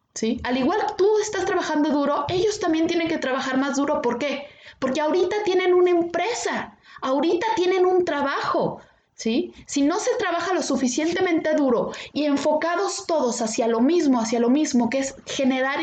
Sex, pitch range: female, 245-320 Hz